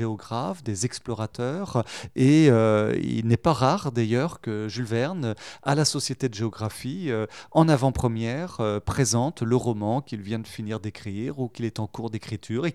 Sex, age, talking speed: male, 30-49, 165 wpm